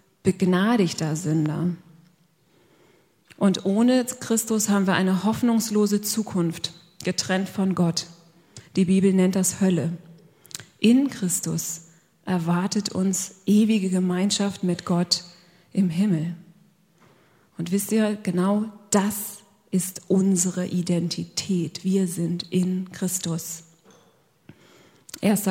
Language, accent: German, German